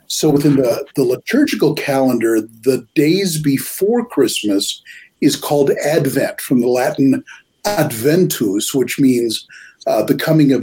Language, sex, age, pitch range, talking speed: English, male, 50-69, 130-200 Hz, 130 wpm